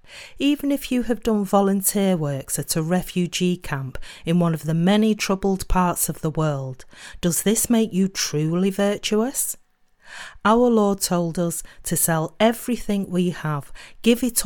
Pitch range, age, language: 160-215 Hz, 40-59, English